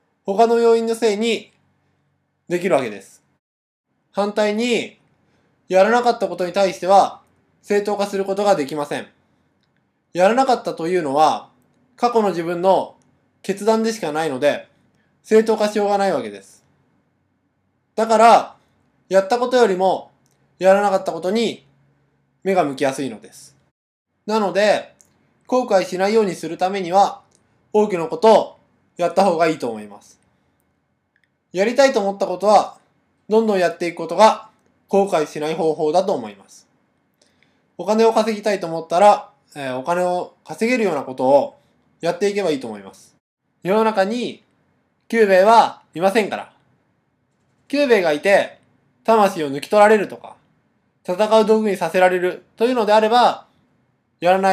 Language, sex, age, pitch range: Japanese, male, 20-39, 170-220 Hz